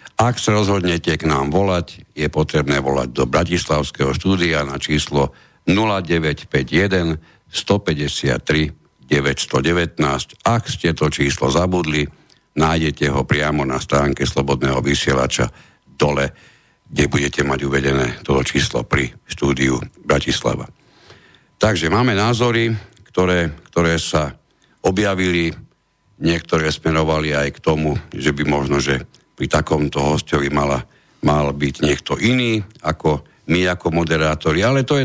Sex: male